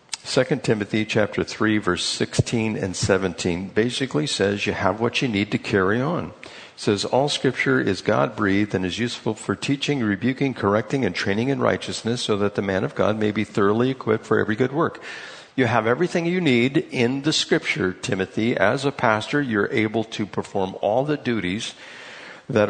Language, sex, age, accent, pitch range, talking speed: English, male, 60-79, American, 105-130 Hz, 180 wpm